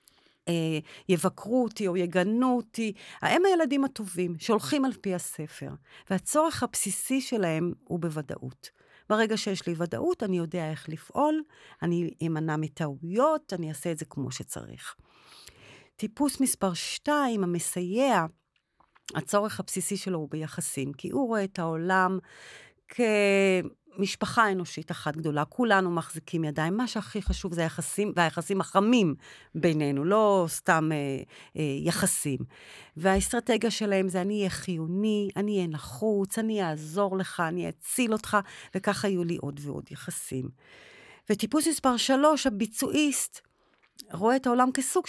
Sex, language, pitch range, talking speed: female, Hebrew, 170-215 Hz, 130 wpm